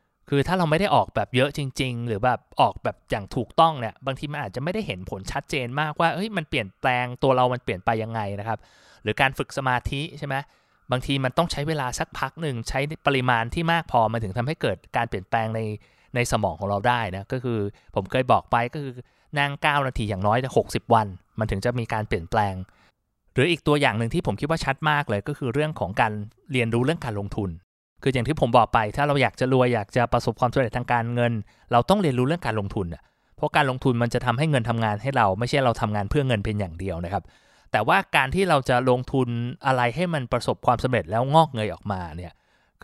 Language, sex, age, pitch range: Thai, male, 20-39, 110-140 Hz